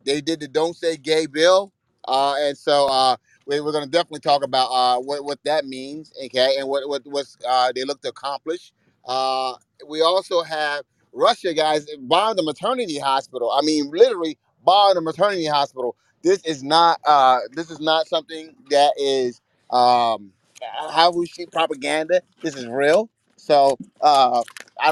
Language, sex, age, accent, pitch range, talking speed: English, male, 30-49, American, 135-175 Hz, 165 wpm